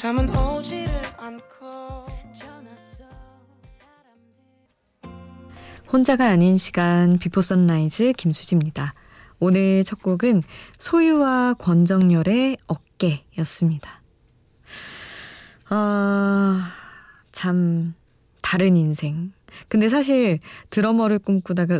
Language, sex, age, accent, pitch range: Korean, female, 20-39, native, 160-210 Hz